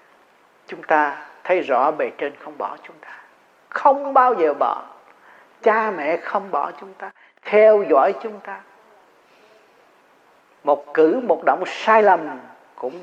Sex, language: male, Vietnamese